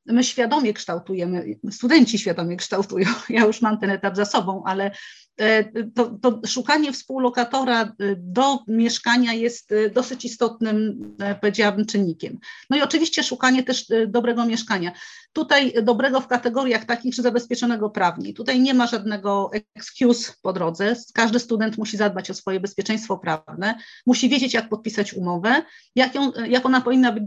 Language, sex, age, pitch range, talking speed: Polish, female, 40-59, 205-245 Hz, 145 wpm